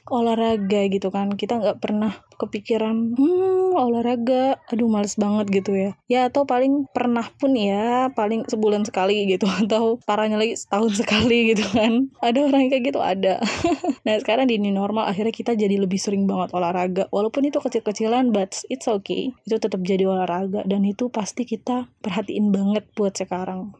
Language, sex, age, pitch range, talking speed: Indonesian, female, 20-39, 205-250 Hz, 165 wpm